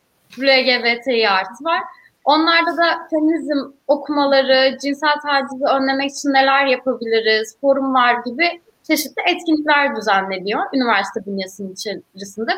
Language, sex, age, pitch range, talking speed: Turkish, female, 20-39, 220-310 Hz, 105 wpm